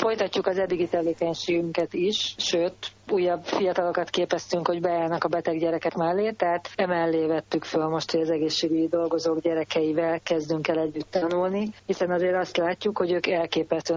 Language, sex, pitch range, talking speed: Hungarian, female, 160-185 Hz, 155 wpm